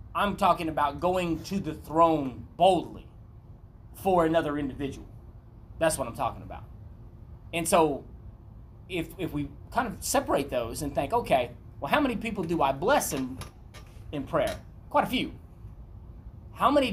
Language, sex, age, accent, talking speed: English, male, 30-49, American, 150 wpm